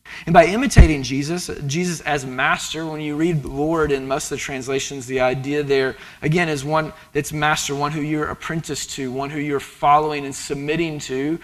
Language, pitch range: English, 130-160 Hz